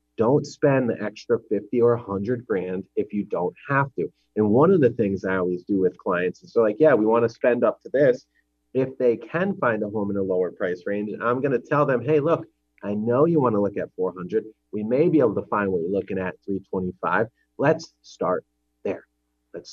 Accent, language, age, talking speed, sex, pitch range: American, English, 30-49, 230 wpm, male, 100-135 Hz